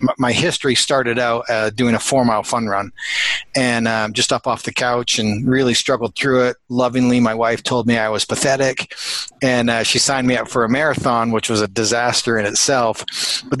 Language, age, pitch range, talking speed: English, 30-49, 115-130 Hz, 205 wpm